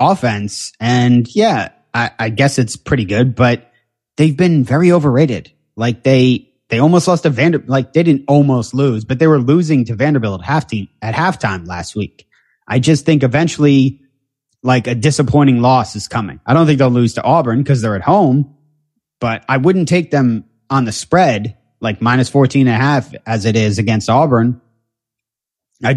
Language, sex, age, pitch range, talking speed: English, male, 30-49, 115-145 Hz, 185 wpm